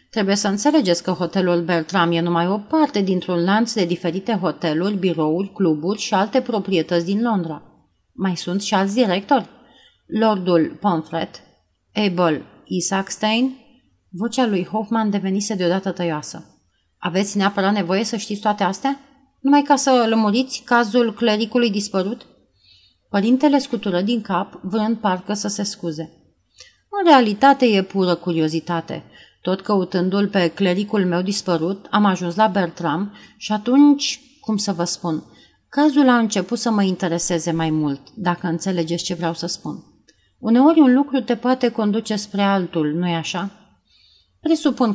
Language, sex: Romanian, female